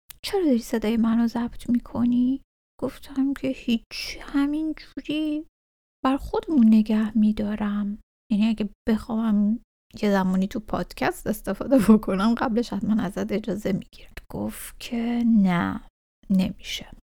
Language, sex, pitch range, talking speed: Persian, female, 195-245 Hz, 115 wpm